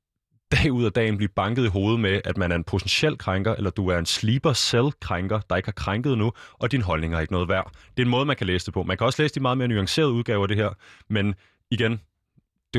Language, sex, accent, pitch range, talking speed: Danish, male, native, 95-120 Hz, 270 wpm